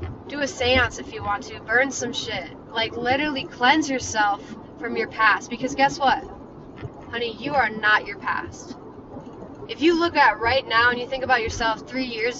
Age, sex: 20-39, female